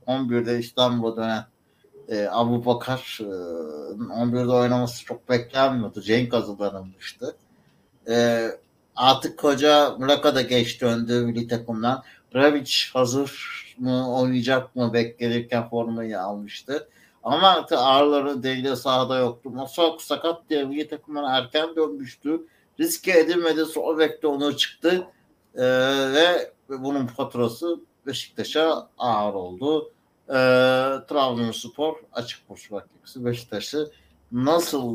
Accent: native